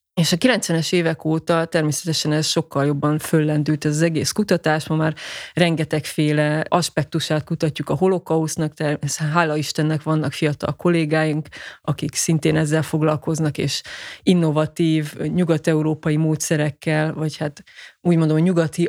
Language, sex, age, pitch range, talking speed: Hungarian, female, 20-39, 150-175 Hz, 125 wpm